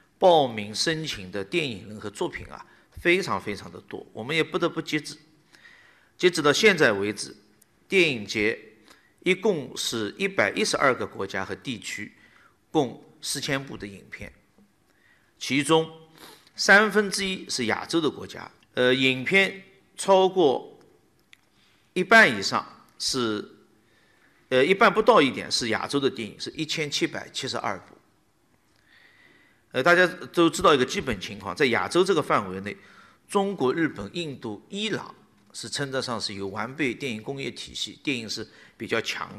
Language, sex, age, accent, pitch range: Chinese, male, 50-69, native, 110-175 Hz